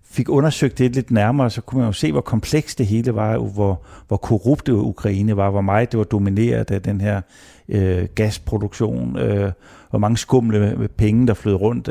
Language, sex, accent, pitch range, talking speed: Danish, male, native, 100-115 Hz, 200 wpm